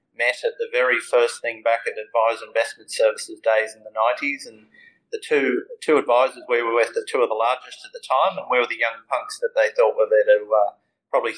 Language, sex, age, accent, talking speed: English, male, 30-49, Australian, 235 wpm